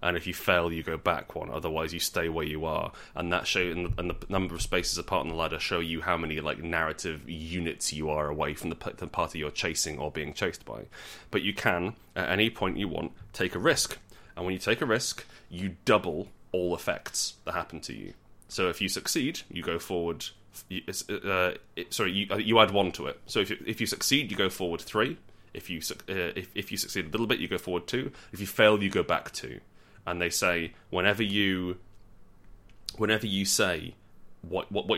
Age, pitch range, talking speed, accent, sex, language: 20-39, 85-100 Hz, 220 wpm, British, male, English